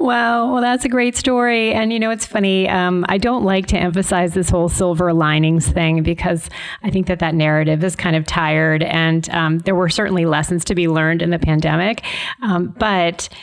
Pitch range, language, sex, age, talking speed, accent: 175-210 Hz, English, female, 30-49, 210 wpm, American